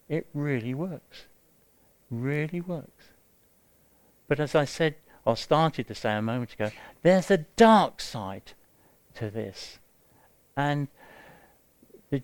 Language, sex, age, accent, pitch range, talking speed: English, male, 50-69, British, 120-175 Hz, 120 wpm